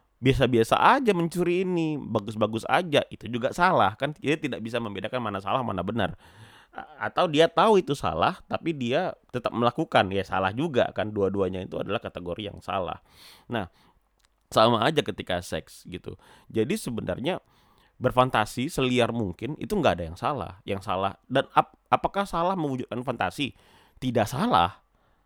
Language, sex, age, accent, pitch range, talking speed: Indonesian, male, 30-49, native, 105-145 Hz, 150 wpm